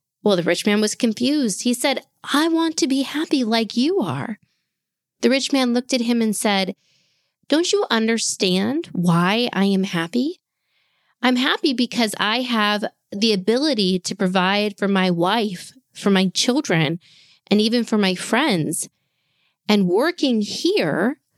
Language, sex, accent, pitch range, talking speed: English, female, American, 180-245 Hz, 150 wpm